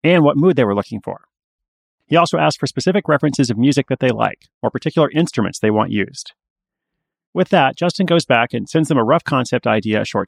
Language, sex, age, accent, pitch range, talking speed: English, male, 30-49, American, 115-150 Hz, 220 wpm